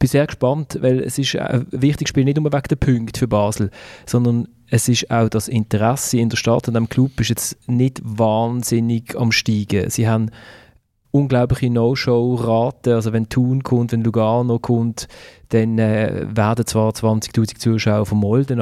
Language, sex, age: German, male, 30-49